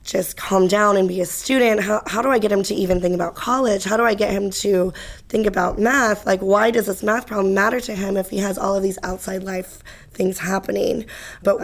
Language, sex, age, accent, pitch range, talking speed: English, female, 20-39, American, 185-210 Hz, 240 wpm